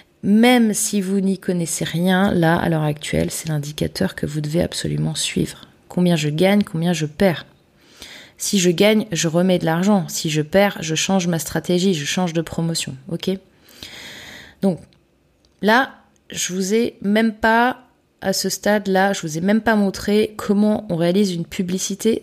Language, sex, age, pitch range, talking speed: French, female, 20-39, 175-215 Hz, 170 wpm